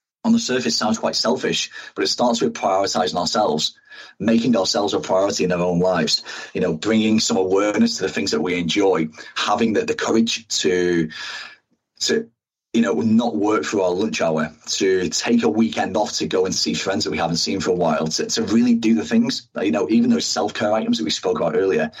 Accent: British